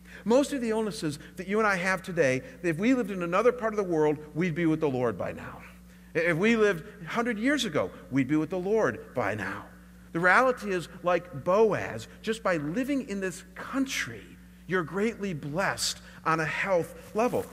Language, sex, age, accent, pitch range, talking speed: English, male, 50-69, American, 160-230 Hz, 195 wpm